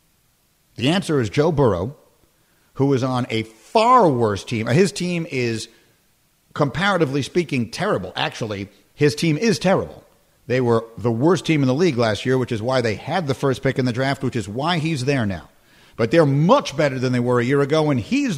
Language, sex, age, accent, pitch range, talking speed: English, male, 50-69, American, 125-175 Hz, 200 wpm